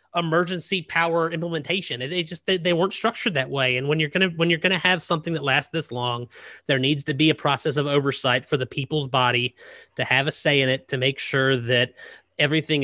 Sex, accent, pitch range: male, American, 130-175 Hz